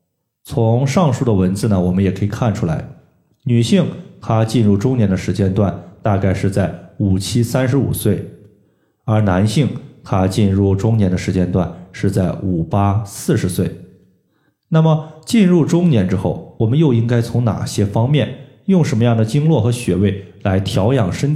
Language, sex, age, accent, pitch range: Chinese, male, 20-39, native, 95-125 Hz